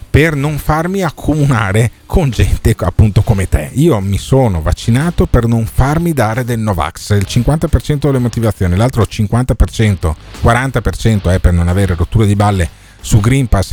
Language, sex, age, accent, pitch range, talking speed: Italian, male, 40-59, native, 95-125 Hz, 160 wpm